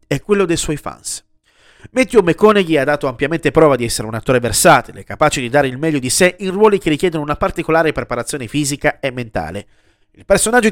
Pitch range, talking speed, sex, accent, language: 130-180 Hz, 195 wpm, male, native, Italian